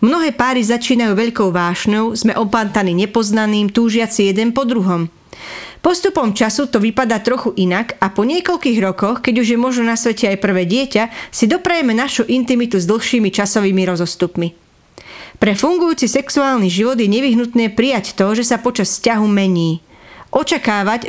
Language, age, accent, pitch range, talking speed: English, 30-49, Czech, 205-255 Hz, 150 wpm